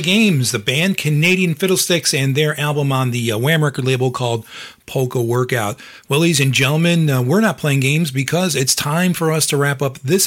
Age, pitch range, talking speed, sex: 40-59, 125-165 Hz, 205 wpm, male